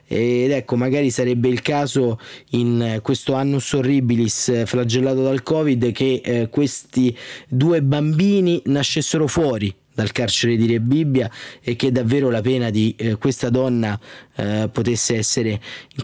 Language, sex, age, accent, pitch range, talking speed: Italian, male, 30-49, native, 115-140 Hz, 140 wpm